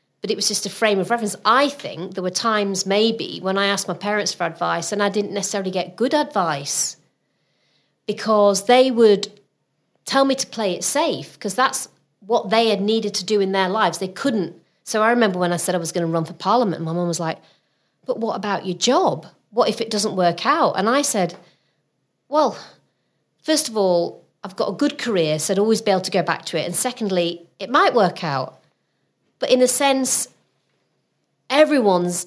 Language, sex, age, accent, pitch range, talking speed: English, female, 30-49, British, 175-215 Hz, 205 wpm